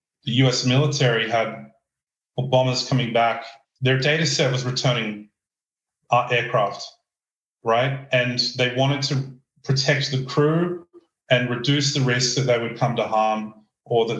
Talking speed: 140 wpm